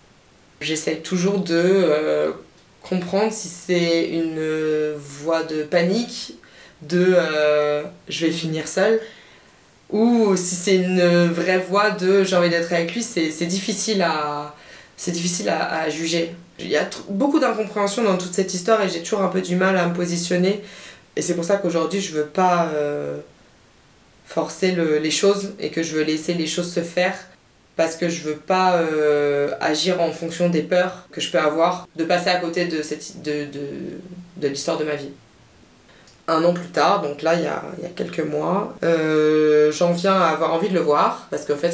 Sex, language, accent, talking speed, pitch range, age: female, French, French, 200 wpm, 155-185 Hz, 20-39